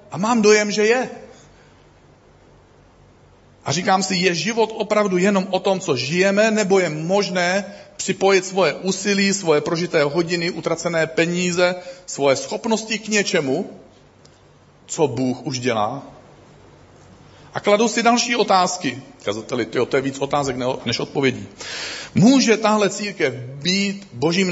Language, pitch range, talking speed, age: Czech, 120-190 Hz, 125 wpm, 40-59